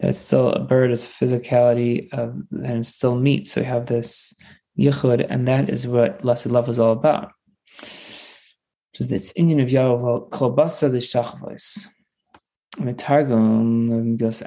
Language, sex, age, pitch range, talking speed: English, male, 20-39, 115-135 Hz, 160 wpm